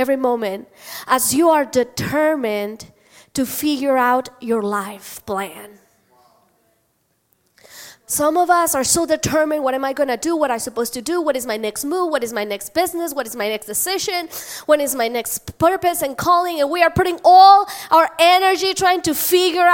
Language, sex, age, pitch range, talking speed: English, female, 20-39, 270-360 Hz, 190 wpm